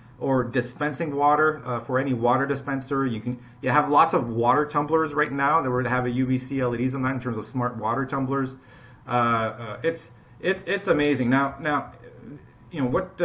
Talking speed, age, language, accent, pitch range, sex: 200 wpm, 40-59, English, American, 125-165 Hz, male